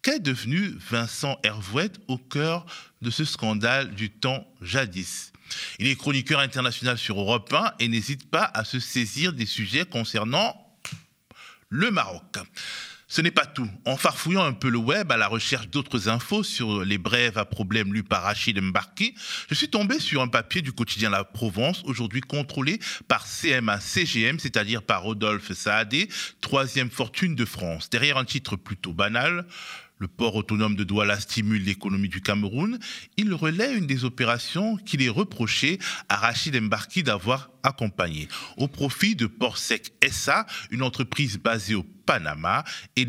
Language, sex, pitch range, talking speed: French, male, 110-145 Hz, 160 wpm